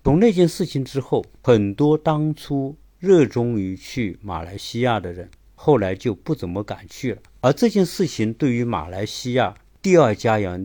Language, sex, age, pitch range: Chinese, male, 50-69, 100-150 Hz